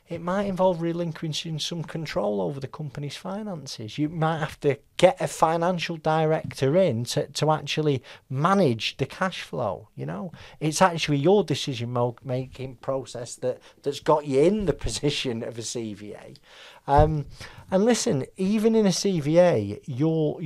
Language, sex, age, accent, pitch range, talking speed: English, male, 40-59, British, 130-170 Hz, 155 wpm